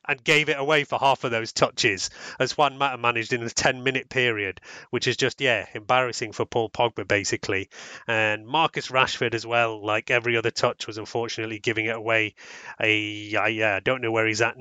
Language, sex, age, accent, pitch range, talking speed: English, male, 30-49, British, 115-140 Hz, 200 wpm